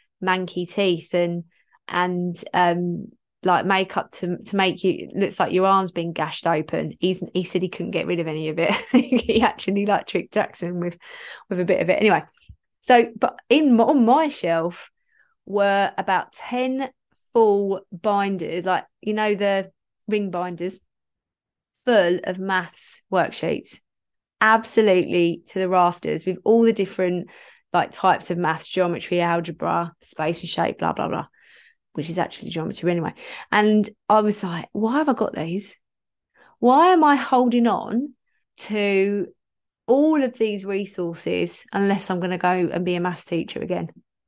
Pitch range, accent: 175-220 Hz, British